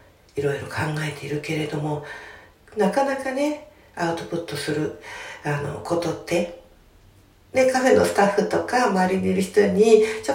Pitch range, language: 155-220 Hz, Japanese